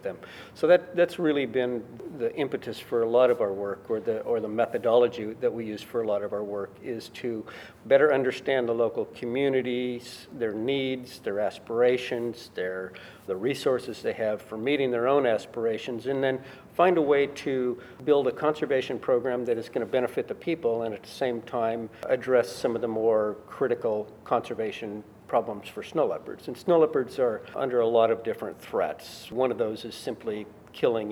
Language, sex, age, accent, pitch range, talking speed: English, male, 50-69, American, 105-135 Hz, 190 wpm